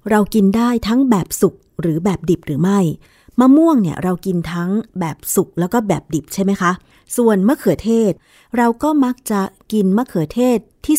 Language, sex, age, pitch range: Thai, female, 20-39, 170-220 Hz